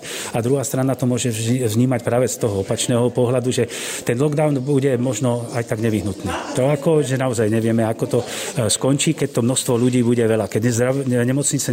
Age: 40-59